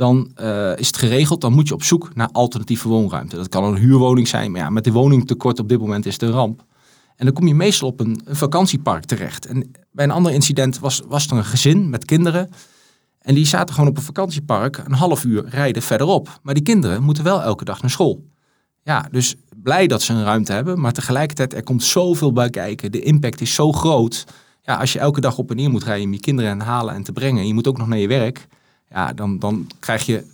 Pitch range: 115-145 Hz